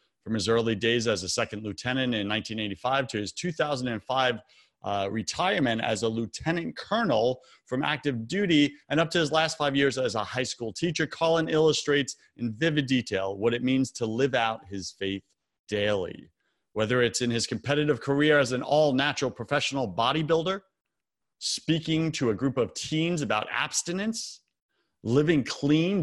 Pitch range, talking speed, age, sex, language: 110-145 Hz, 160 wpm, 30-49, male, English